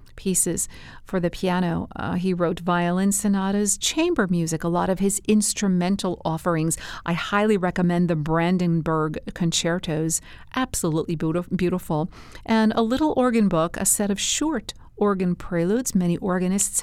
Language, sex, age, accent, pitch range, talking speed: English, female, 50-69, American, 170-205 Hz, 135 wpm